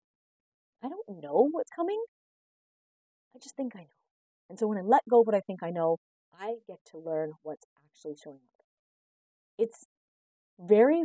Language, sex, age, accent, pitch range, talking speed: English, female, 30-49, American, 175-230 Hz, 175 wpm